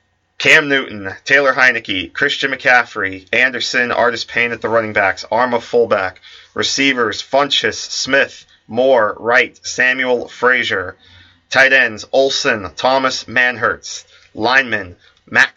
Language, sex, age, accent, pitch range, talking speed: English, male, 30-49, American, 110-140 Hz, 110 wpm